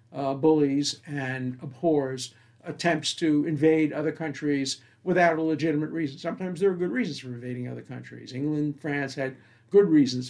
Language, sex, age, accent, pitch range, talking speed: English, male, 60-79, American, 130-155 Hz, 155 wpm